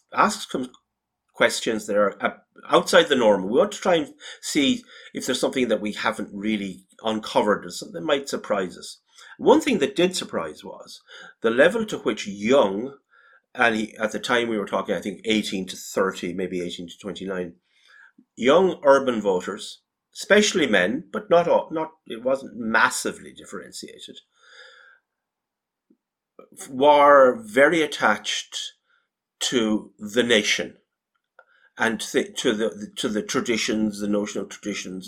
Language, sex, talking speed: English, male, 145 wpm